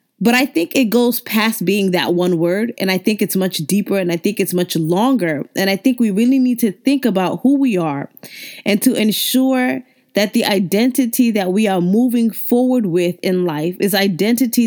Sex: female